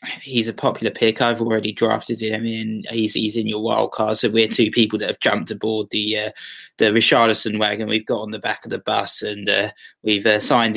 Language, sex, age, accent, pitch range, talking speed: English, male, 20-39, British, 110-125 Hz, 225 wpm